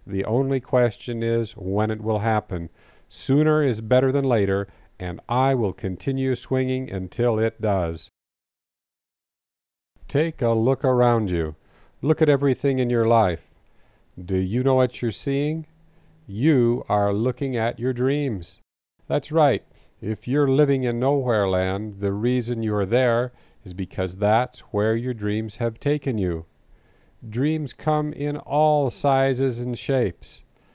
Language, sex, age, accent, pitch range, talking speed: English, male, 50-69, American, 100-130 Hz, 140 wpm